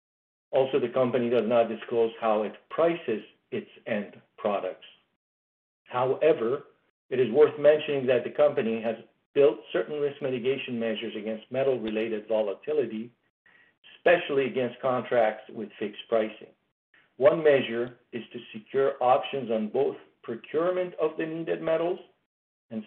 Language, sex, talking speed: English, male, 130 wpm